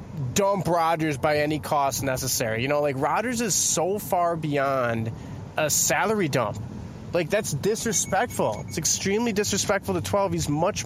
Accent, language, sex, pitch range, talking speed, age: American, English, male, 135-195 Hz, 150 wpm, 20-39